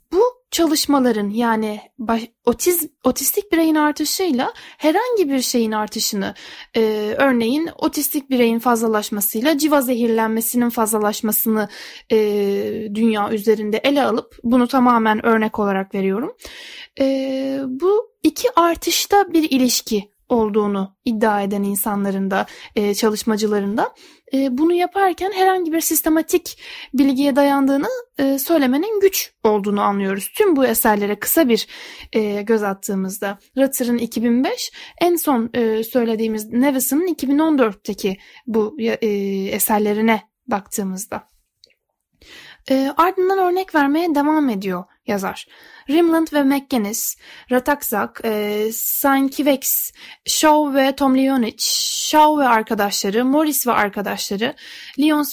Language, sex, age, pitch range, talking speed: Turkish, female, 10-29, 215-310 Hz, 100 wpm